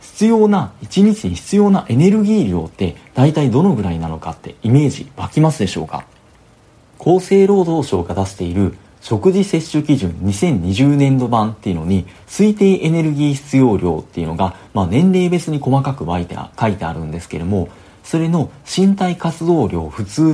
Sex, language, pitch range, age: male, Japanese, 95-155 Hz, 40-59